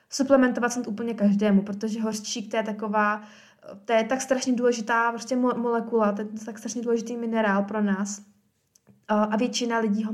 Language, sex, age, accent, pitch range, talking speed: Czech, female, 20-39, native, 205-245 Hz, 165 wpm